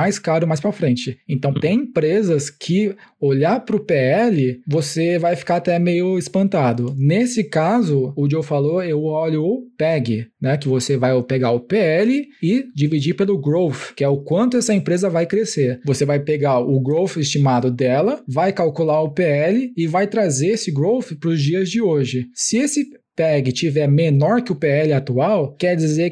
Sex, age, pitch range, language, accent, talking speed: male, 20-39, 140-185 Hz, Portuguese, Brazilian, 180 wpm